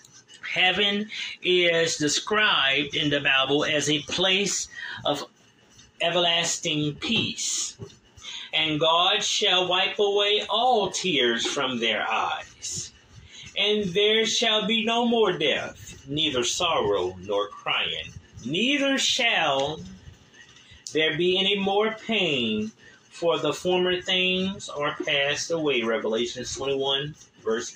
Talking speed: 110 wpm